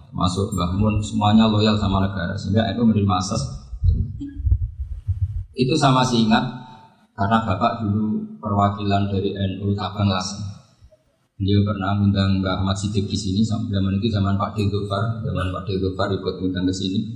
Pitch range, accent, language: 100-125 Hz, native, Indonesian